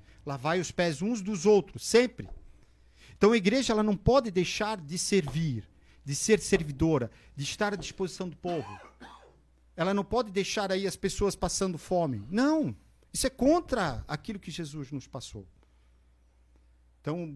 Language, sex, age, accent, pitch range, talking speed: Portuguese, male, 50-69, Brazilian, 125-195 Hz, 150 wpm